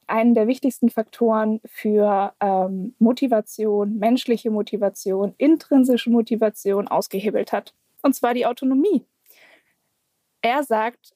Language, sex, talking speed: German, female, 100 wpm